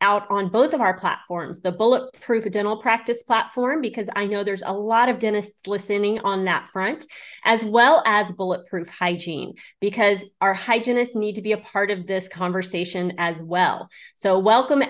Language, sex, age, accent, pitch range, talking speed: English, female, 30-49, American, 190-230 Hz, 175 wpm